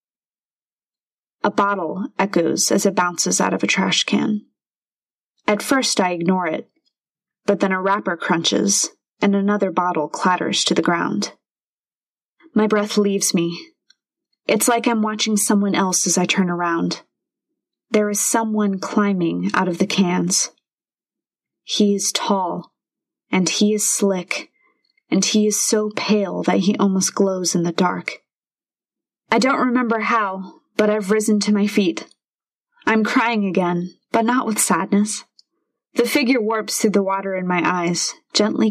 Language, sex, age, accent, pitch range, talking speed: English, female, 20-39, American, 185-215 Hz, 150 wpm